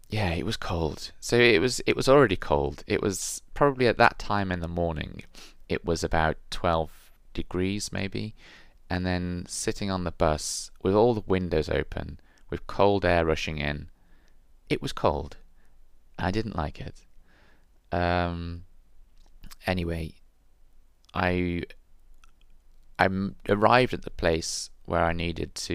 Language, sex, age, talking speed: English, male, 20-39, 140 wpm